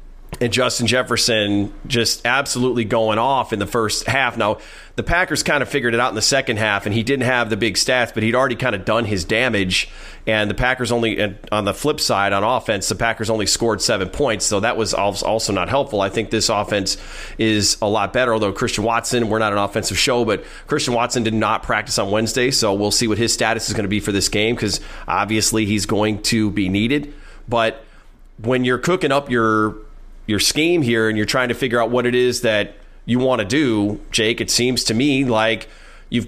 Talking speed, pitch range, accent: 220 wpm, 110-125 Hz, American